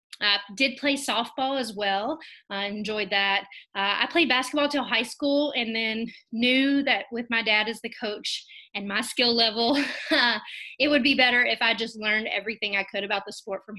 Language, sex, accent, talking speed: English, female, American, 195 wpm